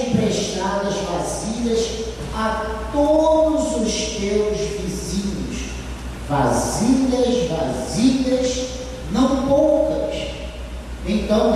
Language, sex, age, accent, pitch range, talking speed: Portuguese, male, 40-59, Brazilian, 185-255 Hz, 65 wpm